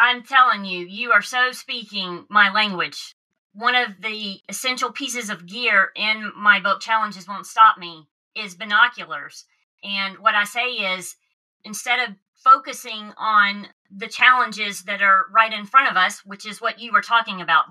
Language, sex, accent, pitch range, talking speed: English, female, American, 200-255 Hz, 170 wpm